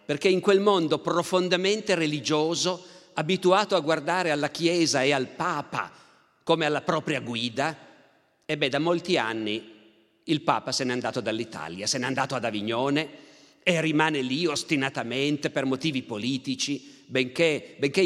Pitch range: 130-175 Hz